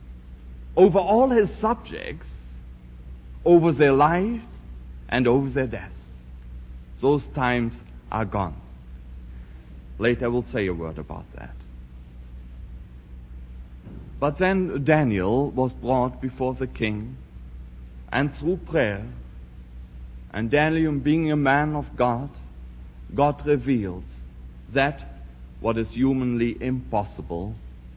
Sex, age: male, 60-79